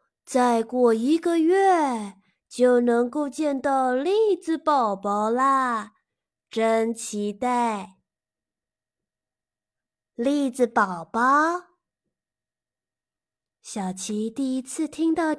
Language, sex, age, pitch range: Chinese, female, 20-39, 200-275 Hz